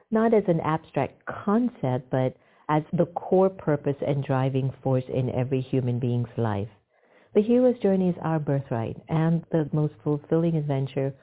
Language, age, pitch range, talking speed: English, 50-69, 130-165 Hz, 155 wpm